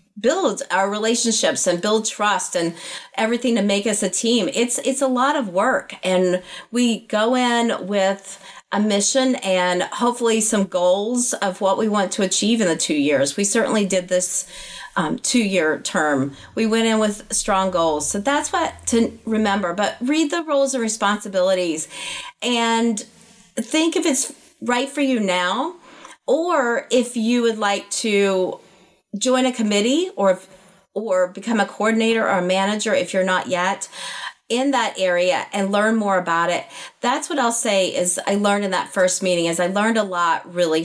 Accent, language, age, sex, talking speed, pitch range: American, English, 40-59, female, 175 wpm, 185-245 Hz